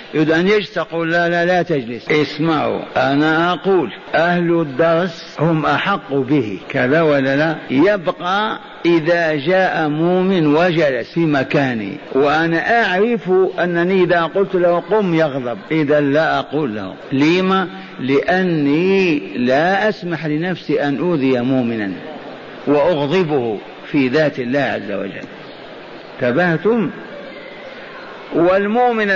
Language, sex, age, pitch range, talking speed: Arabic, male, 50-69, 150-190 Hz, 110 wpm